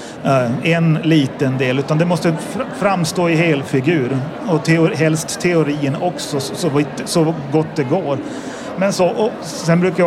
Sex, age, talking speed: male, 30-49, 150 wpm